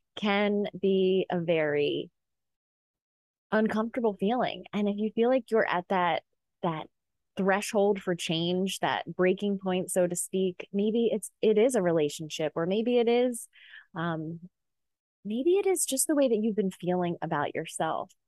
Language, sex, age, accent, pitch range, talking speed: English, female, 20-39, American, 170-220 Hz, 155 wpm